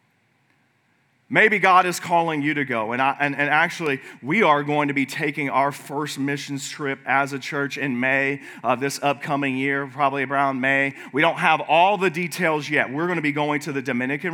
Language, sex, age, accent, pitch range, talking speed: English, male, 40-59, American, 140-170 Hz, 205 wpm